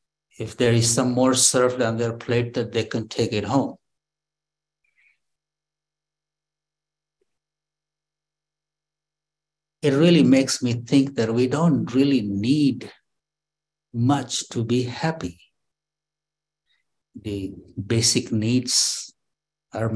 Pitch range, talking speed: 120-155 Hz, 100 wpm